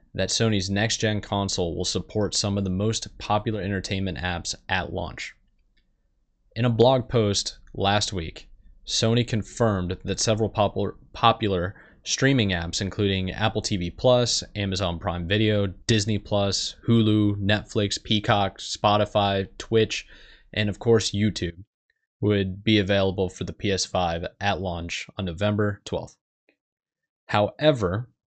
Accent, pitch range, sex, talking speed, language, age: American, 95-110 Hz, male, 120 wpm, English, 20-39